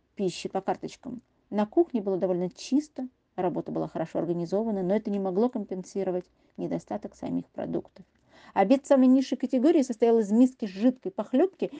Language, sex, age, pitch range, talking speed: Russian, female, 40-59, 180-250 Hz, 145 wpm